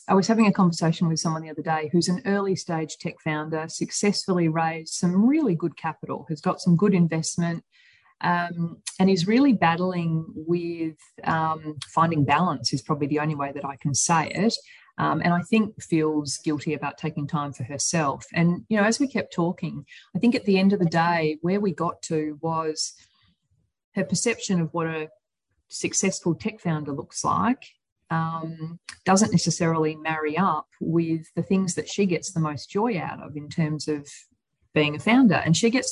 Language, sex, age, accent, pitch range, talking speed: English, female, 30-49, Australian, 155-190 Hz, 185 wpm